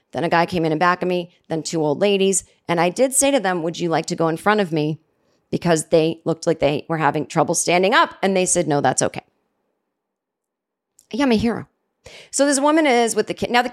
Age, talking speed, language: 30-49, 250 wpm, English